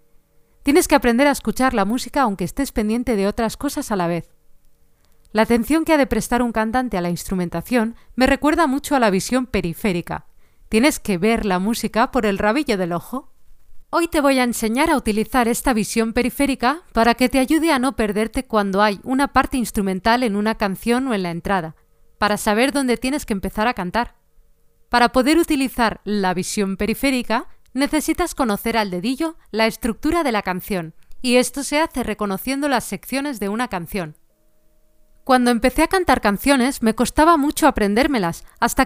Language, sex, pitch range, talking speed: Spanish, female, 205-275 Hz, 180 wpm